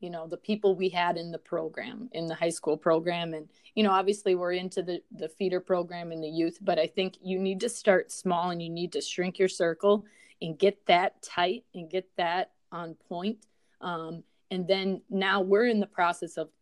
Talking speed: 215 wpm